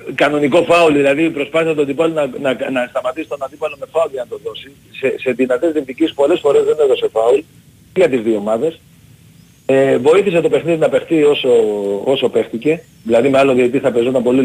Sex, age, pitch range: male, 40-59, 130-170 Hz